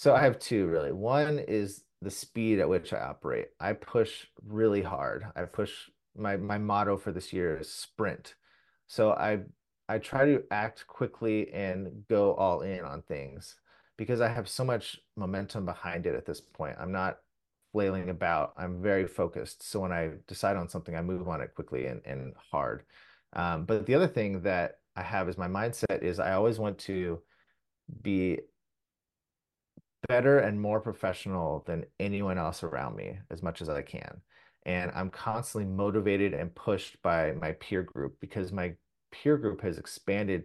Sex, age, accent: male, 30-49, American